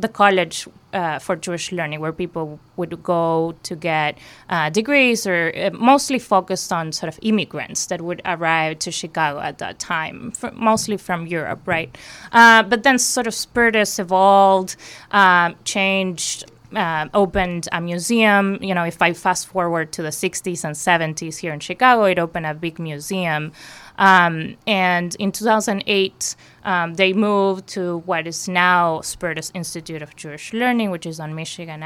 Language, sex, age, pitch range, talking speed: English, female, 20-39, 165-195 Hz, 160 wpm